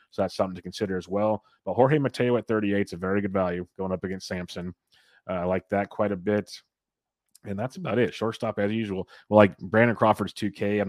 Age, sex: 30-49, male